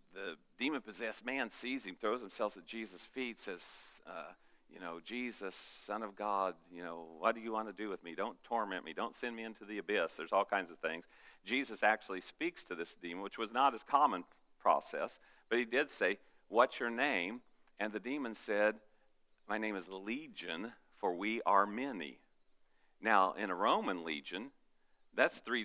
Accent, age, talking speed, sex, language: American, 50-69, 190 wpm, male, English